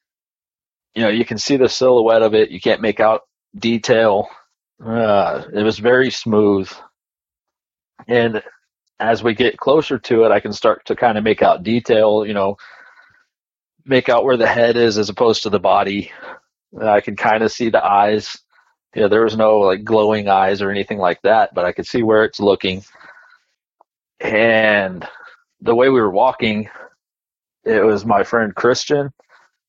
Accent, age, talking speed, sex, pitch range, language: American, 40-59, 175 wpm, male, 105-125 Hz, English